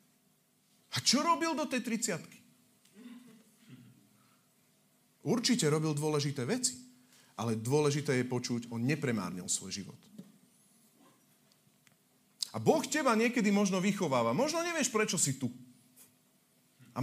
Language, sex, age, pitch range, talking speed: Slovak, male, 40-59, 125-210 Hz, 105 wpm